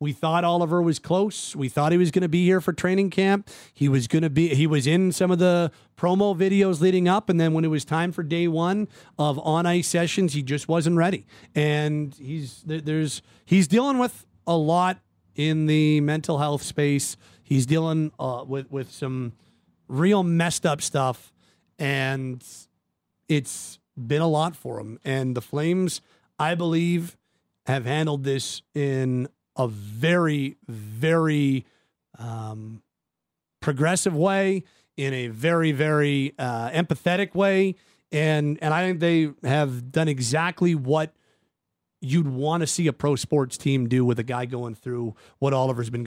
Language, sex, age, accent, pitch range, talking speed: English, male, 40-59, American, 130-175 Hz, 165 wpm